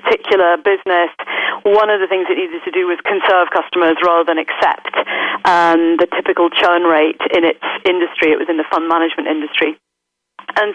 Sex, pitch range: female, 165-205 Hz